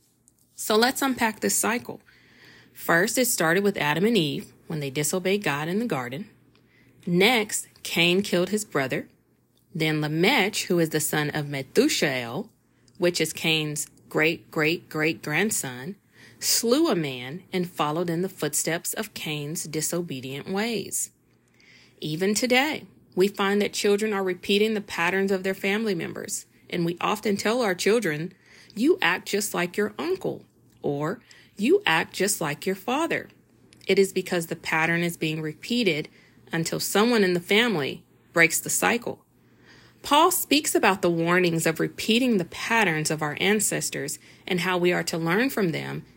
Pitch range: 160-205 Hz